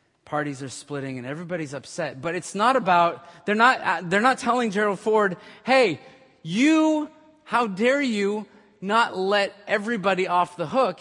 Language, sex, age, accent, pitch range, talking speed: English, male, 30-49, American, 135-210 Hz, 155 wpm